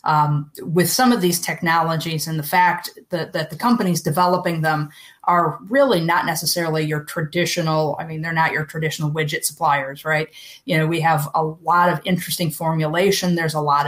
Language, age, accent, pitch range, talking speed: English, 30-49, American, 155-180 Hz, 180 wpm